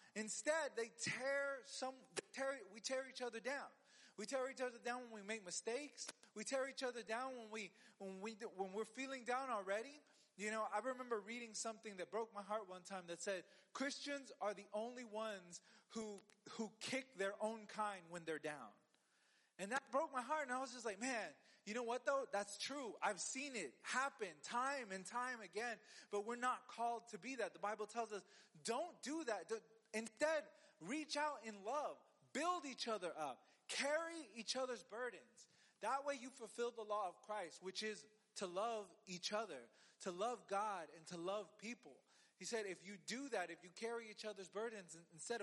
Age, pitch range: 20-39, 205-260 Hz